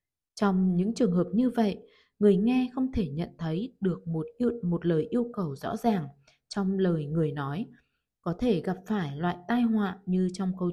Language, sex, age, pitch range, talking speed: Vietnamese, female, 20-39, 165-225 Hz, 190 wpm